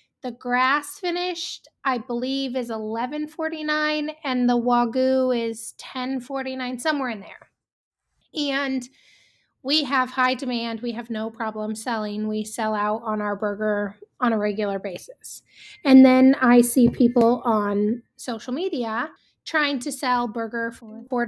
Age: 20-39